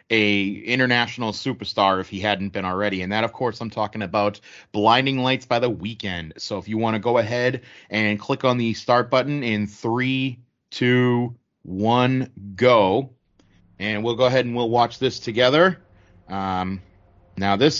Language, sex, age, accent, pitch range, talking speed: English, male, 30-49, American, 105-130 Hz, 170 wpm